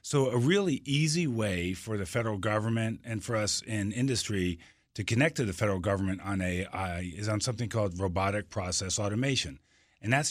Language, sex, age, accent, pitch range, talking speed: English, male, 40-59, American, 95-115 Hz, 180 wpm